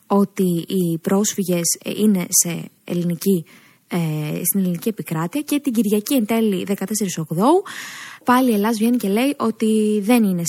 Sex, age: female, 20-39